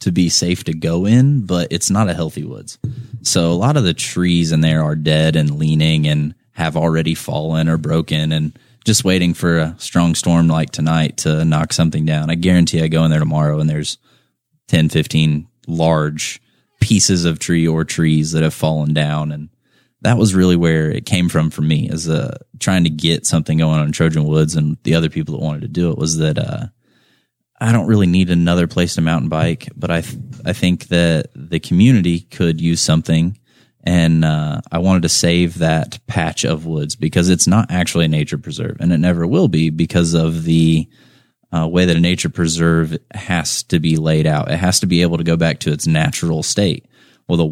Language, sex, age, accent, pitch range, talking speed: English, male, 20-39, American, 80-90 Hz, 210 wpm